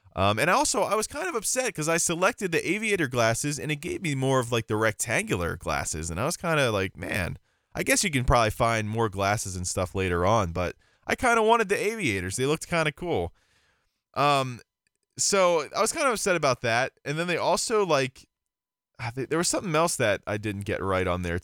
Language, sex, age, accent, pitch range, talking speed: English, male, 20-39, American, 105-160 Hz, 230 wpm